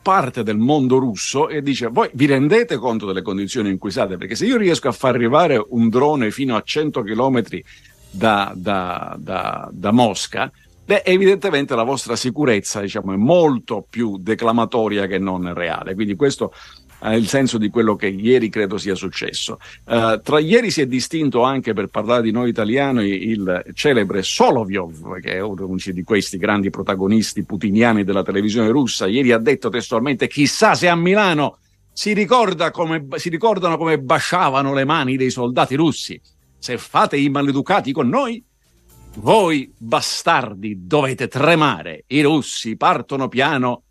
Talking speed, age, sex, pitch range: 160 wpm, 50-69, male, 105-140 Hz